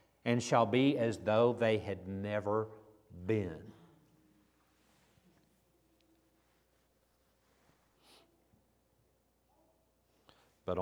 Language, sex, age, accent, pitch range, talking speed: English, male, 50-69, American, 95-120 Hz, 55 wpm